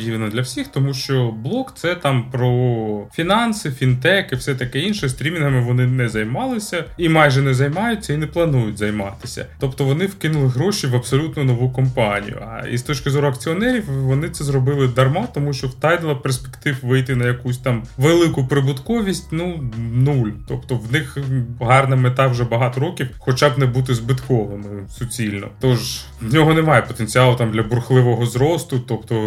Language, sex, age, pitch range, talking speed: Ukrainian, male, 20-39, 120-150 Hz, 165 wpm